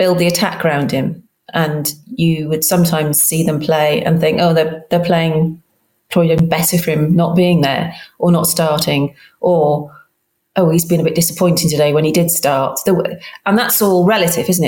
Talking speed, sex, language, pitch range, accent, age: 185 wpm, female, English, 155-175 Hz, British, 30-49